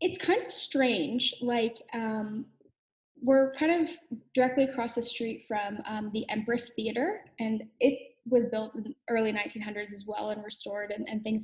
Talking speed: 180 wpm